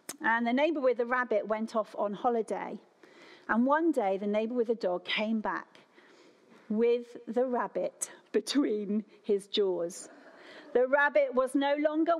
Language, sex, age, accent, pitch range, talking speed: English, female, 40-59, British, 220-320 Hz, 155 wpm